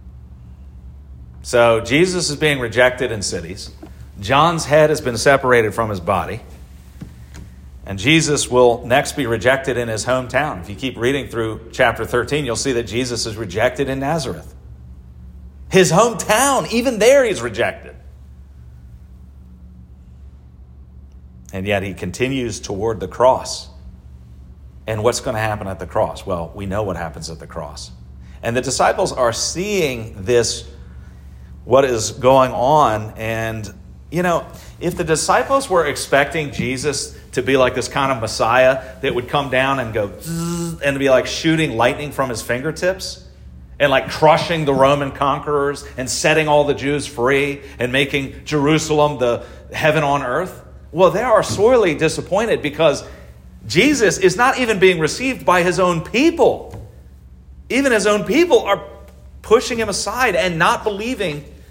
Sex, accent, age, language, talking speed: male, American, 40-59, English, 150 wpm